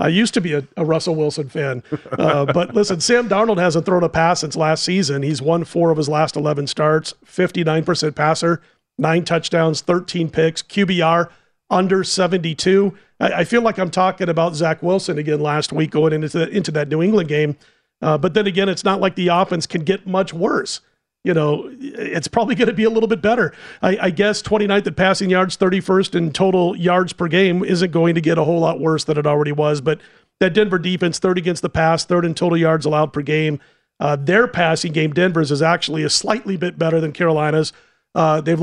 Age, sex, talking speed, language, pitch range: 40-59, male, 210 wpm, English, 160-195 Hz